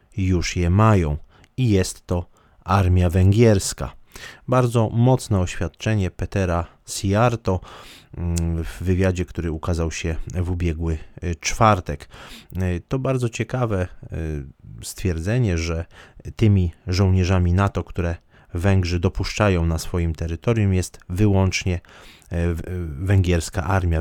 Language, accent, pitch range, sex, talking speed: Polish, native, 85-100 Hz, male, 95 wpm